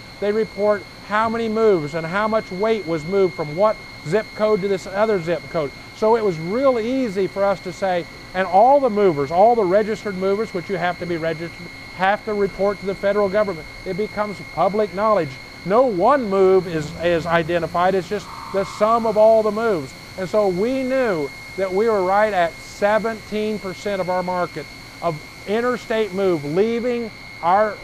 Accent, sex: American, male